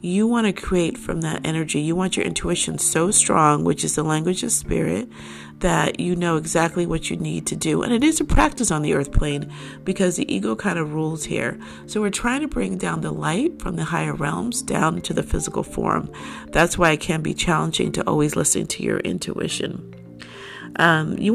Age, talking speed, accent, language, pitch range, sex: 50-69, 210 wpm, American, English, 155-200 Hz, female